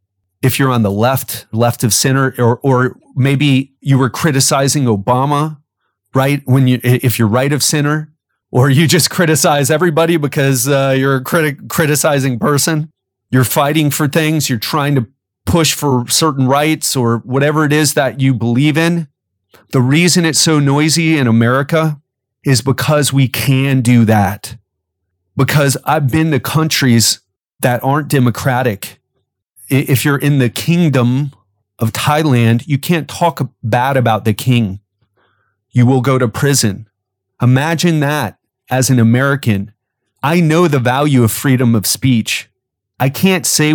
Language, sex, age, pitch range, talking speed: English, male, 30-49, 120-150 Hz, 150 wpm